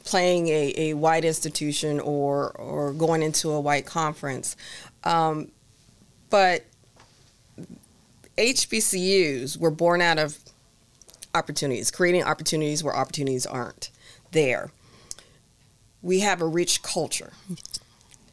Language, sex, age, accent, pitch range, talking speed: English, female, 40-59, American, 145-175 Hz, 100 wpm